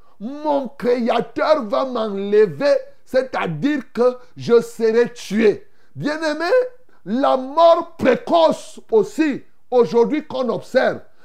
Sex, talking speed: male, 100 wpm